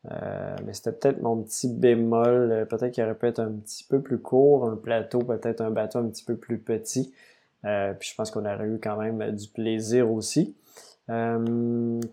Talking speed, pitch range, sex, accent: 200 wpm, 110-125 Hz, male, Canadian